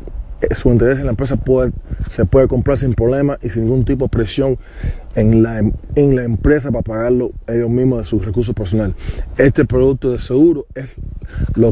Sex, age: male, 20-39